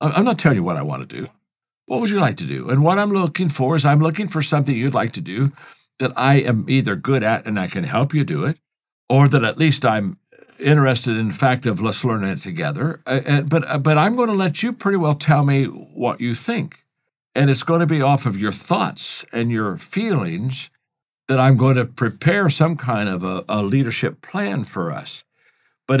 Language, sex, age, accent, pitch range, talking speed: English, male, 60-79, American, 125-160 Hz, 220 wpm